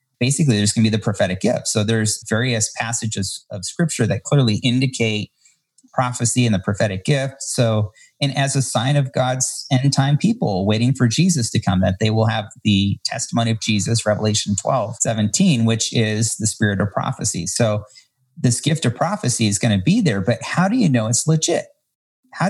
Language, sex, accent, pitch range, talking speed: English, male, American, 105-135 Hz, 185 wpm